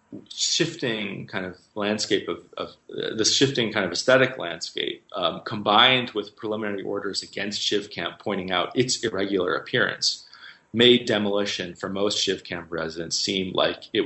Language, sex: English, male